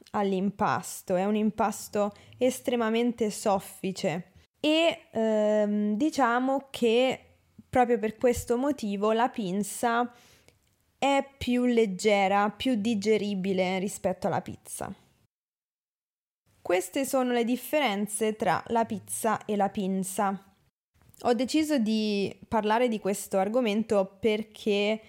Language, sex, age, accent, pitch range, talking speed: Italian, female, 20-39, native, 200-235 Hz, 100 wpm